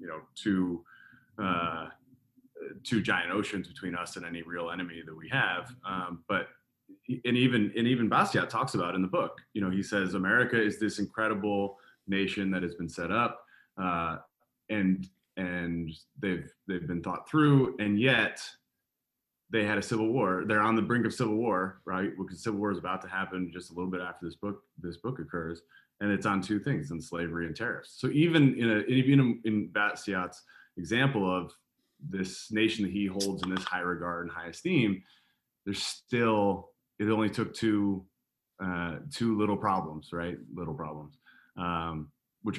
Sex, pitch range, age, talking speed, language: male, 90-110 Hz, 30-49, 180 wpm, English